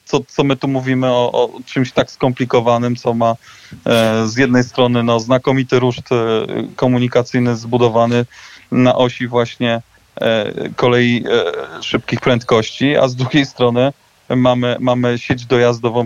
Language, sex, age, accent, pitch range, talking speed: Polish, male, 20-39, native, 115-130 Hz, 140 wpm